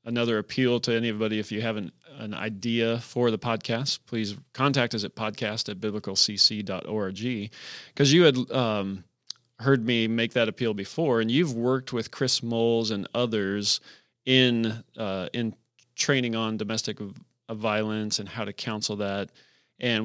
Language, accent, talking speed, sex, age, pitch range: English, American, 155 wpm, male, 30-49, 105-125 Hz